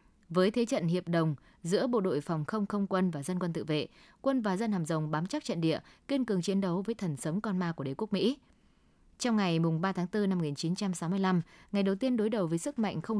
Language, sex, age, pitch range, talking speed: Vietnamese, female, 20-39, 165-215 Hz, 250 wpm